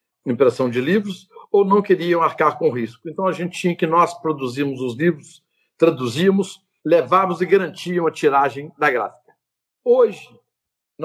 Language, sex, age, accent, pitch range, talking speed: Portuguese, male, 60-79, Brazilian, 150-200 Hz, 150 wpm